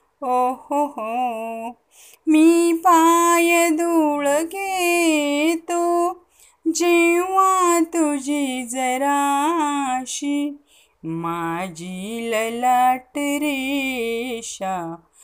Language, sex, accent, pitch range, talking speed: Marathi, female, native, 225-305 Hz, 45 wpm